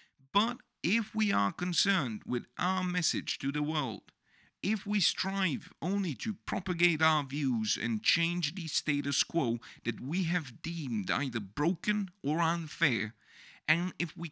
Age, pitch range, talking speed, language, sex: 50-69, 110-175 Hz, 145 wpm, English, male